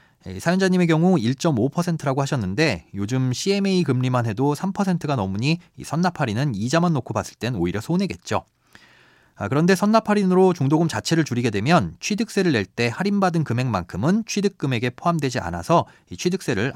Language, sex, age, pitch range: Korean, male, 40-59, 115-175 Hz